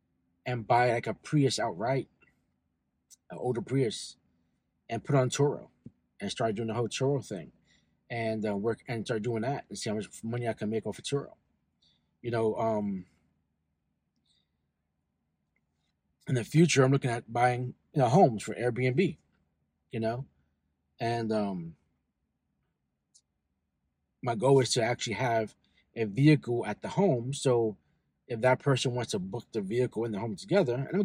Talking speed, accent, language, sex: 160 wpm, American, English, male